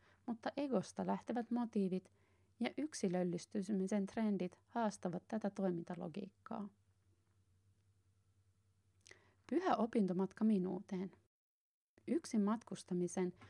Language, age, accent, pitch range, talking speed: Finnish, 30-49, native, 180-215 Hz, 65 wpm